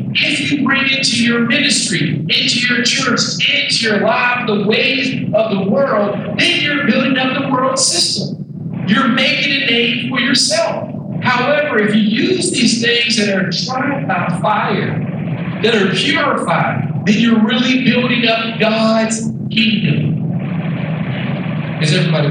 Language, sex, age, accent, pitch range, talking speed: English, male, 50-69, American, 170-235 Hz, 145 wpm